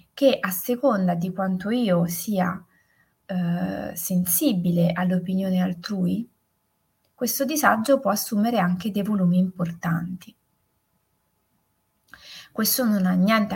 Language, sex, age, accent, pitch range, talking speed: Italian, female, 20-39, native, 175-205 Hz, 100 wpm